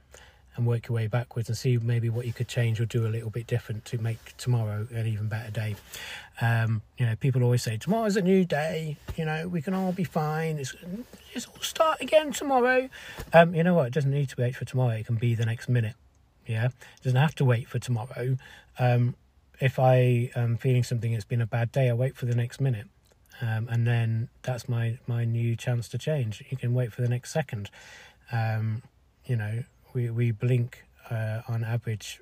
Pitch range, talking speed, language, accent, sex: 110-130 Hz, 215 wpm, English, British, male